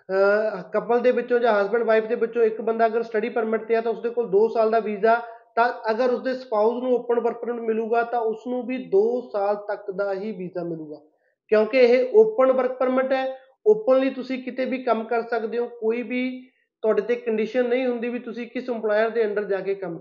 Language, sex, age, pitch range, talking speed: Punjabi, male, 20-39, 215-245 Hz, 215 wpm